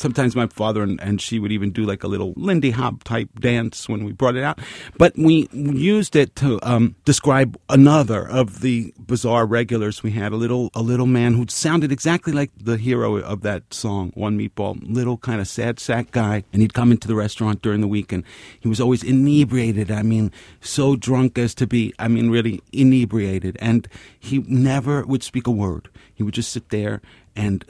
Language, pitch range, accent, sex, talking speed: English, 105-130 Hz, American, male, 200 wpm